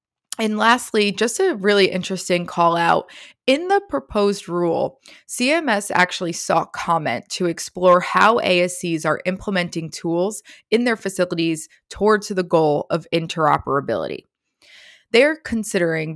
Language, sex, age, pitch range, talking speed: English, female, 20-39, 165-220 Hz, 125 wpm